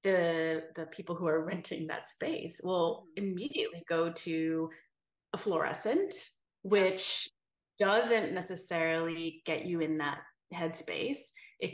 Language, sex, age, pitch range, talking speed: English, female, 30-49, 165-270 Hz, 120 wpm